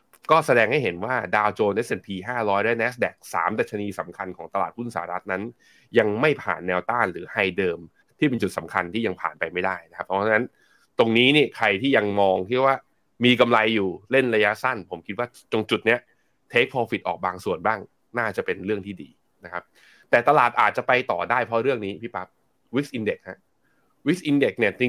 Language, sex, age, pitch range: Thai, male, 20-39, 100-125 Hz